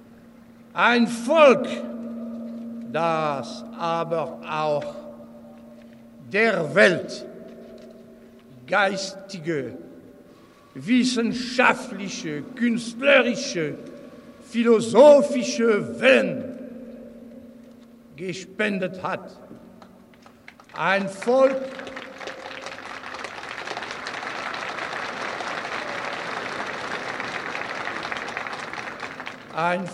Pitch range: 195-255 Hz